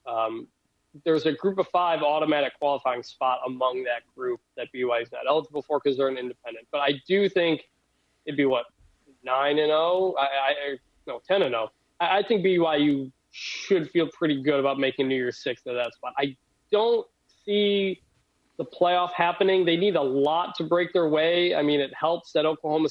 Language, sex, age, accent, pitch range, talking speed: English, male, 20-39, American, 135-175 Hz, 190 wpm